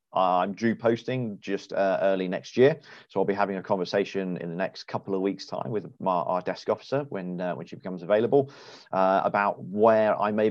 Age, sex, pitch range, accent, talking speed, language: 30-49, male, 90-105 Hz, British, 210 wpm, English